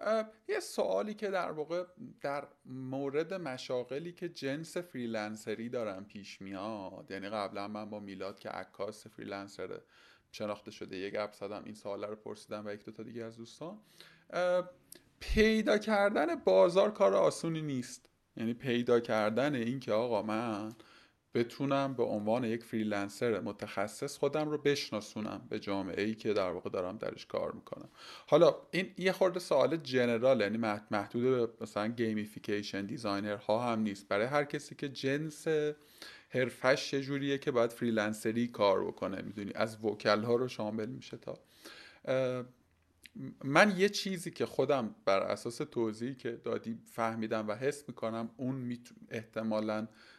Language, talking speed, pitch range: Persian, 145 wpm, 110-150 Hz